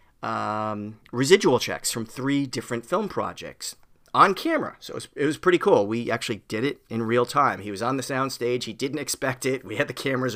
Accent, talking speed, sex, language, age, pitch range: American, 210 wpm, male, English, 40-59, 105-130 Hz